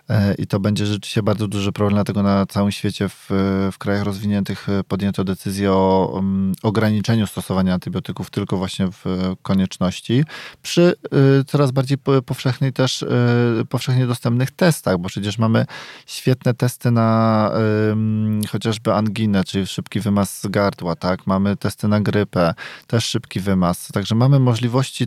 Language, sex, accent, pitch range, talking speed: Polish, male, native, 100-125 Hz, 145 wpm